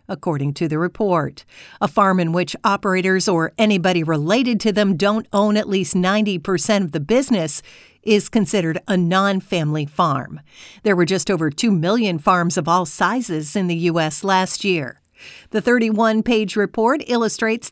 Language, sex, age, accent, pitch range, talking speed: English, female, 50-69, American, 175-220 Hz, 155 wpm